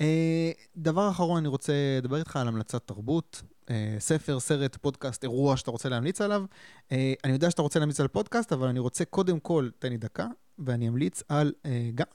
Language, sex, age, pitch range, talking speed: Hebrew, male, 30-49, 115-150 Hz, 180 wpm